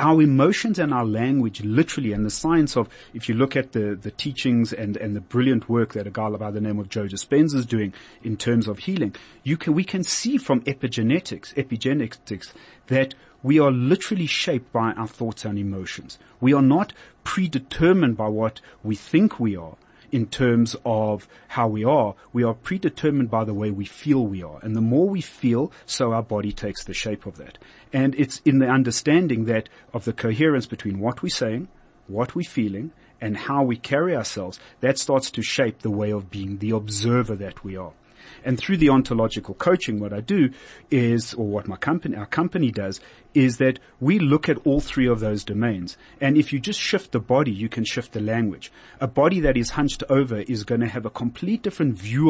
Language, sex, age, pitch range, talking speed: English, male, 30-49, 110-140 Hz, 205 wpm